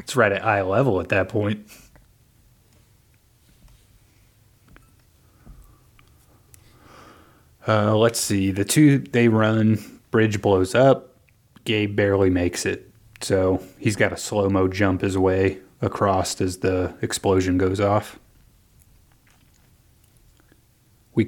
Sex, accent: male, American